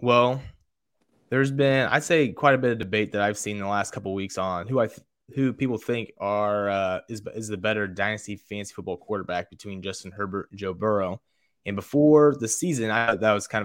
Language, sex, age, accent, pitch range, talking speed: English, male, 20-39, American, 95-120 Hz, 220 wpm